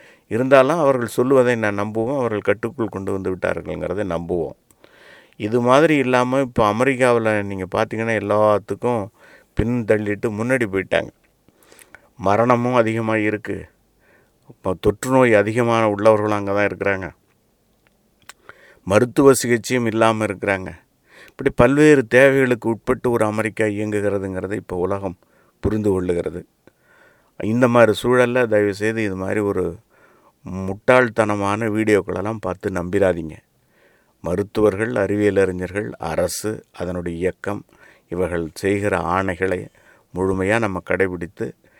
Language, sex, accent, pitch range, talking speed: Tamil, male, native, 100-120 Hz, 100 wpm